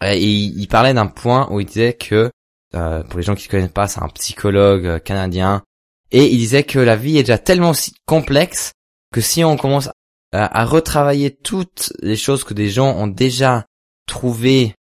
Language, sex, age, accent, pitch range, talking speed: French, male, 20-39, French, 95-115 Hz, 200 wpm